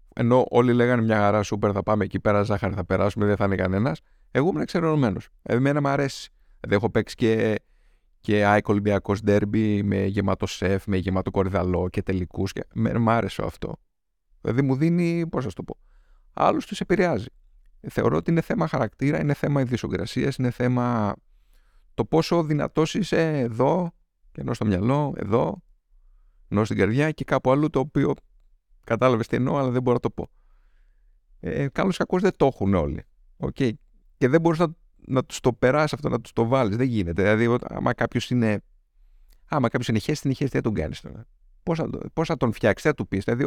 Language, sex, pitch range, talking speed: Greek, male, 105-150 Hz, 190 wpm